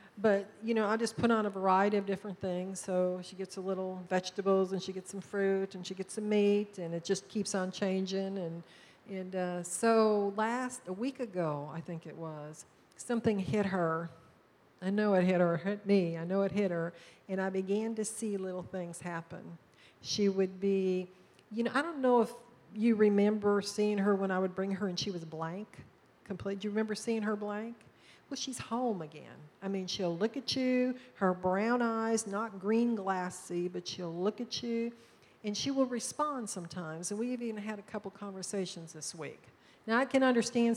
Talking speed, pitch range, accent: 200 wpm, 185-220 Hz, American